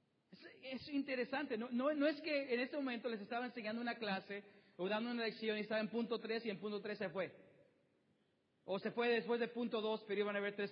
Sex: male